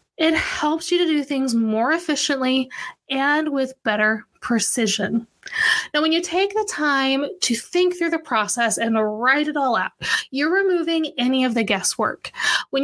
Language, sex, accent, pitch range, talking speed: English, female, American, 235-330 Hz, 165 wpm